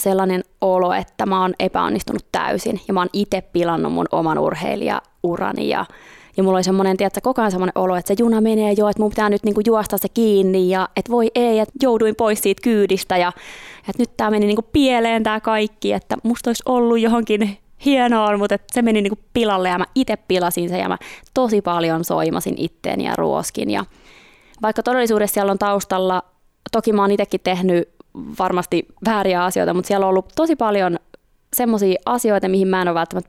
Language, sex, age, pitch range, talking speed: Finnish, female, 20-39, 185-215 Hz, 190 wpm